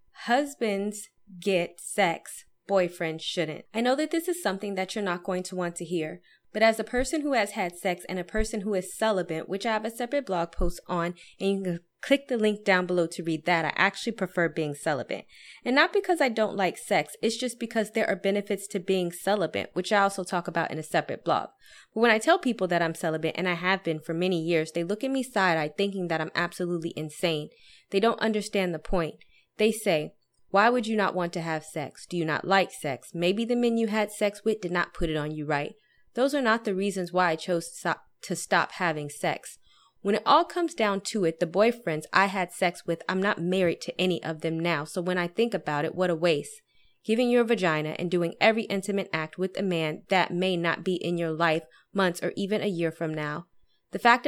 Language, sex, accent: English, female, American